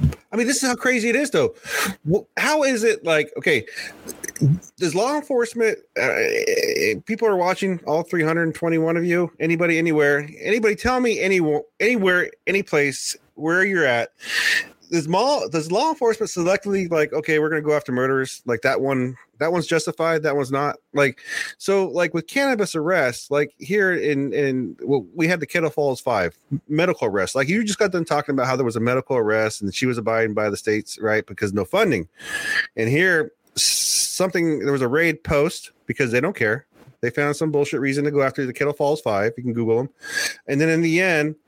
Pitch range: 130-190 Hz